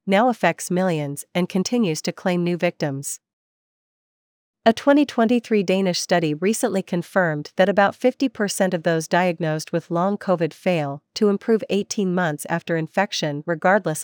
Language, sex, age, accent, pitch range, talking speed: English, female, 40-59, American, 160-200 Hz, 135 wpm